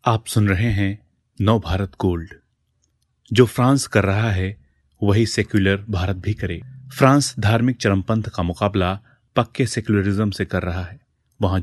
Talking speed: 150 wpm